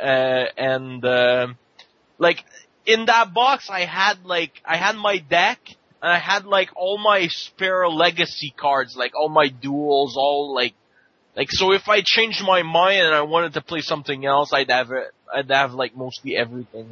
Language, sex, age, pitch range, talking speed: English, male, 20-39, 140-180 Hz, 180 wpm